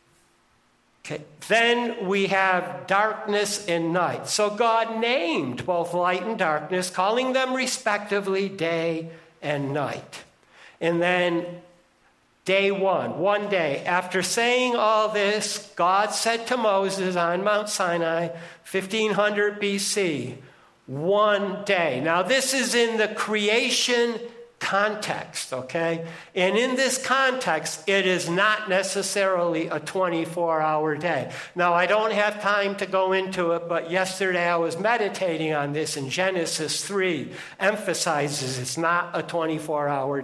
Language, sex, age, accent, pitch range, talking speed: English, male, 60-79, American, 170-215 Hz, 125 wpm